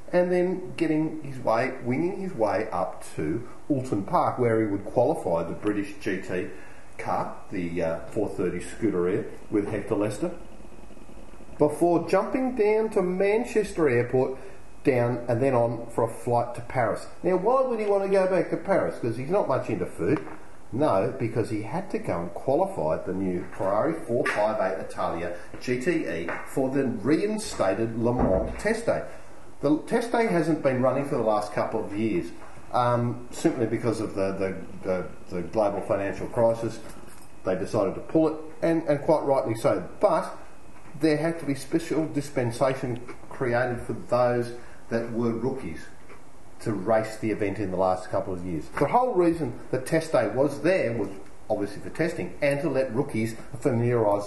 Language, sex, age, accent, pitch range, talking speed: English, female, 40-59, Australian, 110-160 Hz, 165 wpm